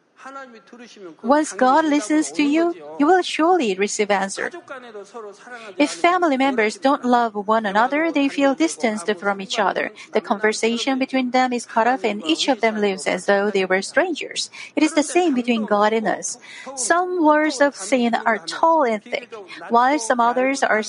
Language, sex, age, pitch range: Korean, female, 40-59, 215-285 Hz